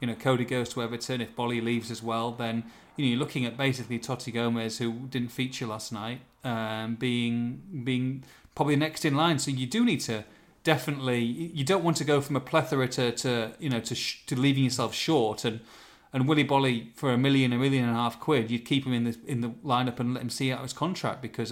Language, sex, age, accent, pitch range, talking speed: English, male, 30-49, British, 115-135 Hz, 240 wpm